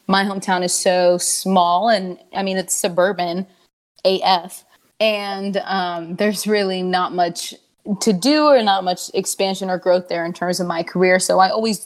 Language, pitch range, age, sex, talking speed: English, 180-200 Hz, 20-39, female, 170 wpm